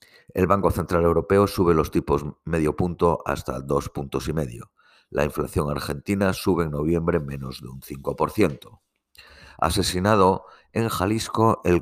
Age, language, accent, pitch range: 50-69, Spanish, Spanish, 75-90 Hz